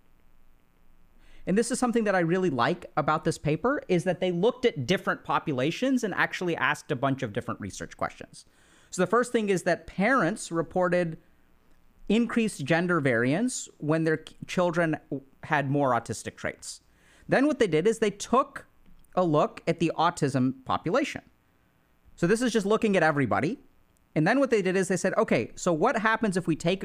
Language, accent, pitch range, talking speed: English, American, 140-195 Hz, 180 wpm